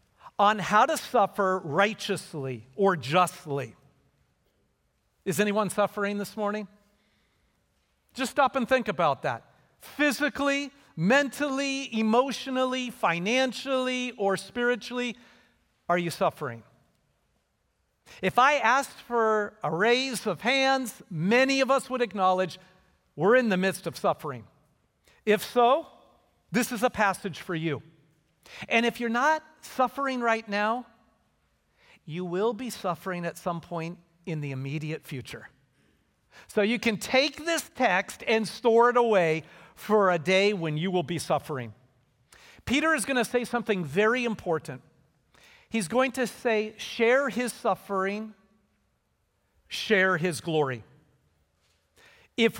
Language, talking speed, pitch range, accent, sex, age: English, 125 wpm, 170-245 Hz, American, male, 50-69